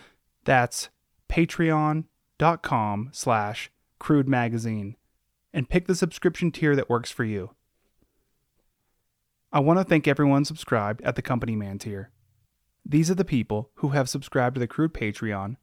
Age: 20-39